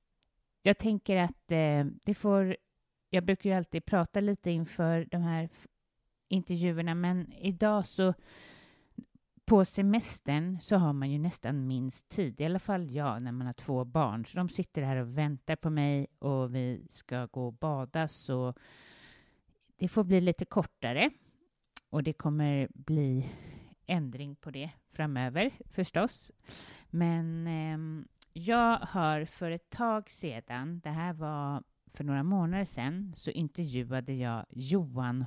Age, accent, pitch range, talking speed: 30-49, Swedish, 130-180 Hz, 140 wpm